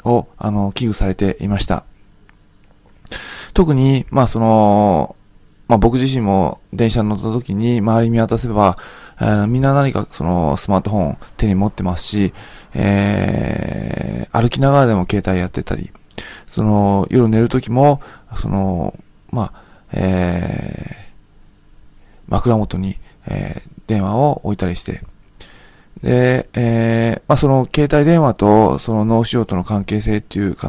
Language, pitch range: Japanese, 100-120 Hz